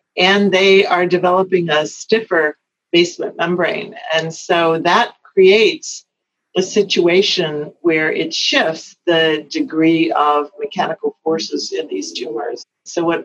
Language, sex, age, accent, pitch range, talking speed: English, female, 50-69, American, 155-195 Hz, 120 wpm